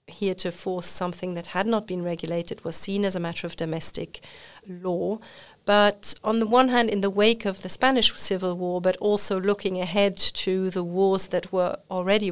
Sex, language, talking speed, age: female, English, 195 wpm, 40-59